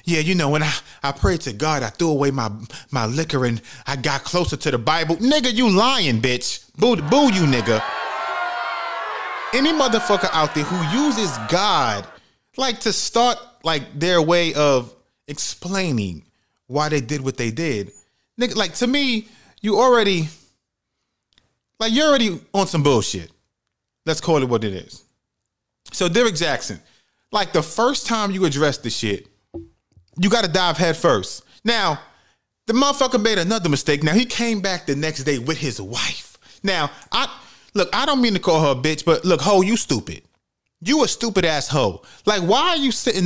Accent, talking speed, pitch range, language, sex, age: American, 180 wpm, 135-205 Hz, English, male, 30-49